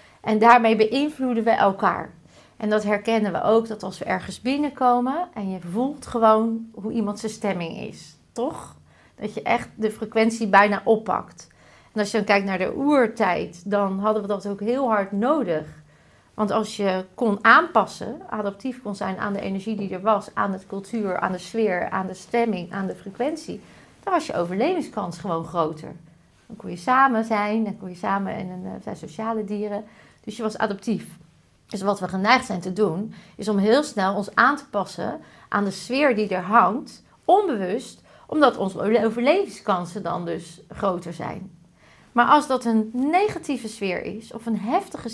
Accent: Dutch